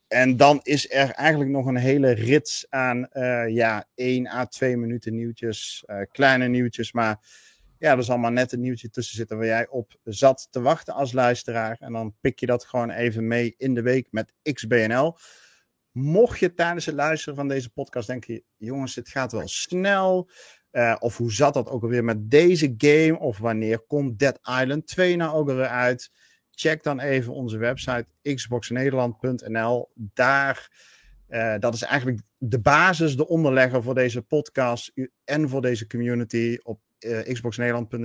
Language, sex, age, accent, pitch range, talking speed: Dutch, male, 50-69, Dutch, 115-140 Hz, 175 wpm